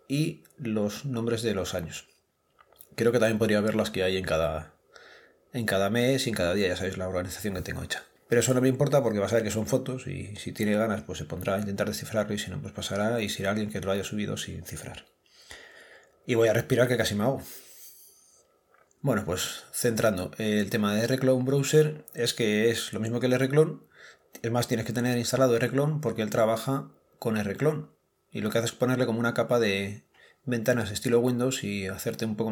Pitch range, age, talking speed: 105-125 Hz, 30-49, 220 wpm